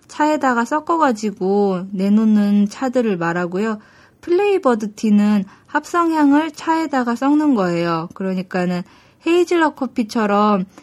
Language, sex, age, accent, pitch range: Korean, female, 20-39, native, 195-295 Hz